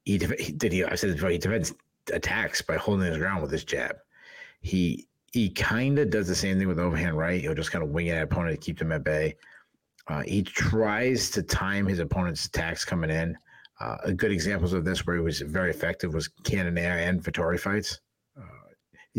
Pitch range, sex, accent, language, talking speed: 85-100 Hz, male, American, English, 215 wpm